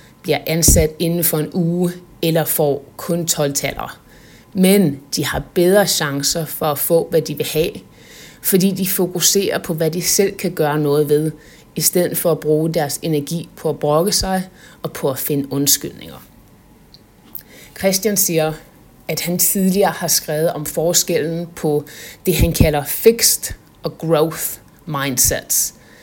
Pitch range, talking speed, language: 150-180 Hz, 155 wpm, Danish